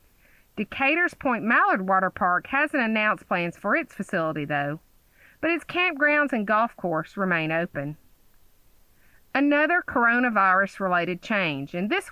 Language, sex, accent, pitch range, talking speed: English, female, American, 185-265 Hz, 125 wpm